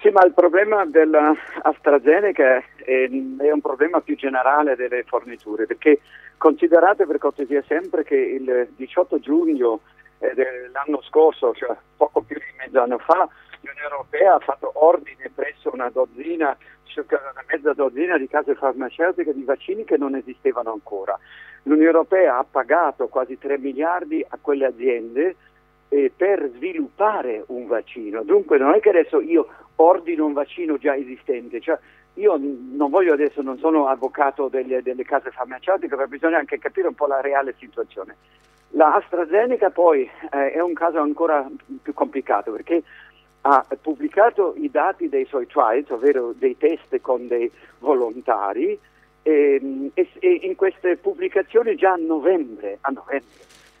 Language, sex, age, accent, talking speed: Italian, male, 50-69, native, 145 wpm